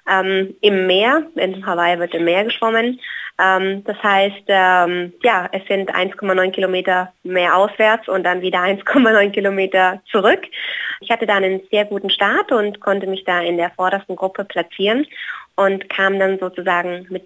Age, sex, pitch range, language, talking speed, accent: 20-39, female, 190-215 Hz, German, 165 wpm, German